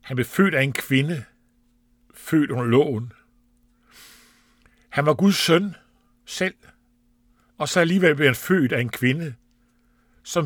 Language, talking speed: Danish, 140 wpm